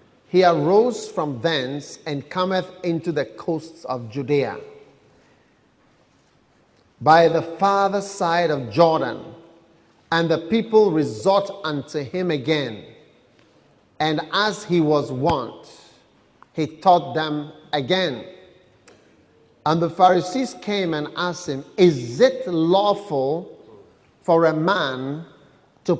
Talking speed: 110 wpm